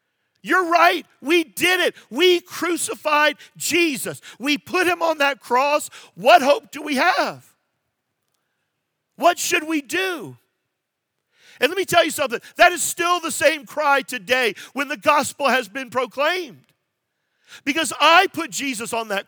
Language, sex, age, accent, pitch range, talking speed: English, male, 50-69, American, 235-320 Hz, 150 wpm